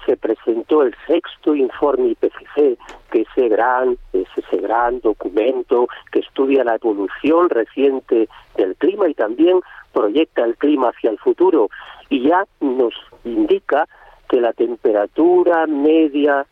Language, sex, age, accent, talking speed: Spanish, male, 50-69, Spanish, 135 wpm